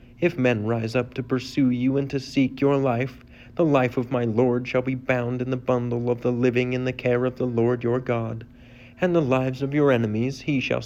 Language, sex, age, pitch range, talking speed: English, male, 40-59, 120-135 Hz, 230 wpm